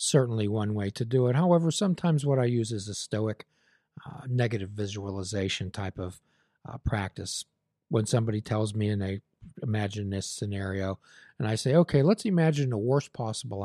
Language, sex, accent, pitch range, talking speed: English, male, American, 100-140 Hz, 170 wpm